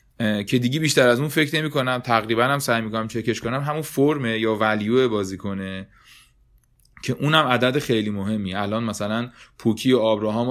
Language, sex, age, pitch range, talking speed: Persian, male, 30-49, 105-135 Hz, 175 wpm